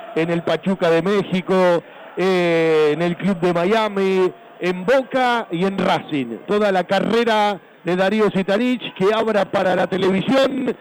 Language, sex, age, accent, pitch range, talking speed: Spanish, male, 50-69, Argentinian, 170-220 Hz, 150 wpm